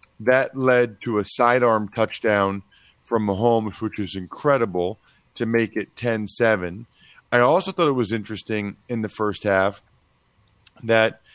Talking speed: 135 wpm